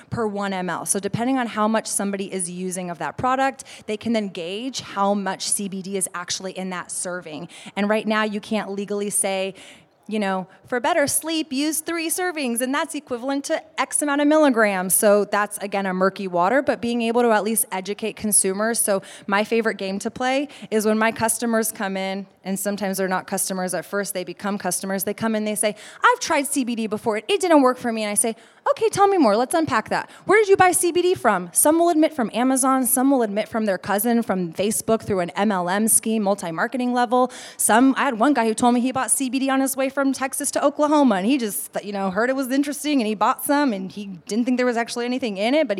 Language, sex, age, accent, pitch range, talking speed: English, female, 20-39, American, 200-260 Hz, 230 wpm